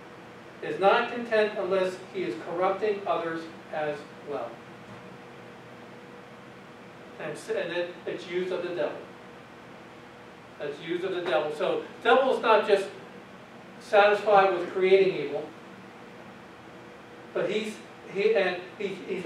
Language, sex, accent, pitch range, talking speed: English, male, American, 175-210 Hz, 110 wpm